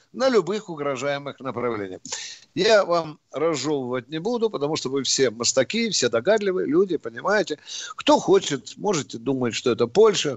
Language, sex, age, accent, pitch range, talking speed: Russian, male, 50-69, native, 125-175 Hz, 145 wpm